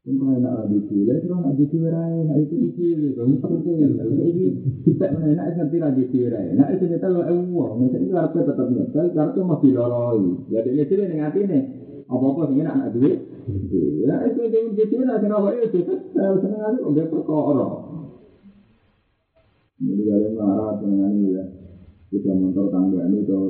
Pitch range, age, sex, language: 95-160 Hz, 30-49, male, Indonesian